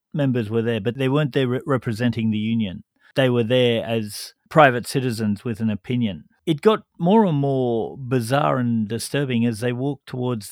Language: English